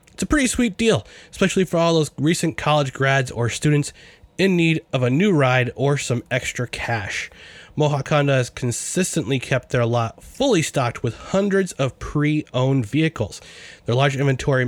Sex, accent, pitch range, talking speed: male, American, 125-160 Hz, 170 wpm